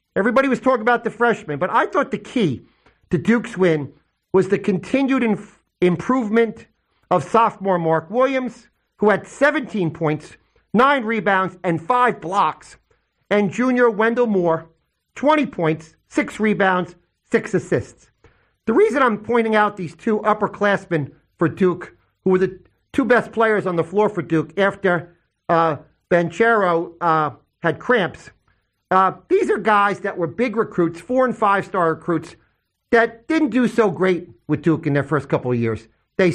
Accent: American